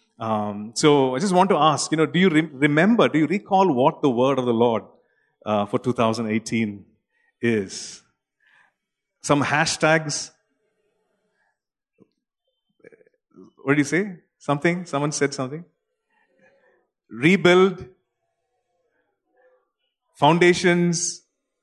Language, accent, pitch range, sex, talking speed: English, Indian, 120-175 Hz, male, 105 wpm